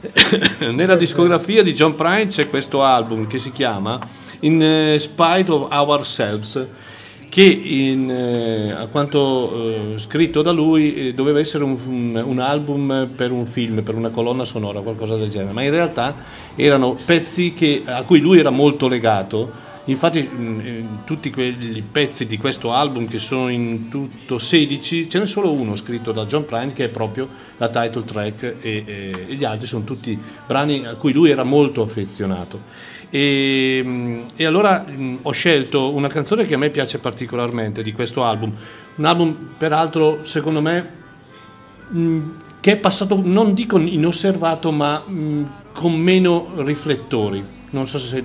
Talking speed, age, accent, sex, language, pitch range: 155 wpm, 40-59, native, male, Italian, 115-155 Hz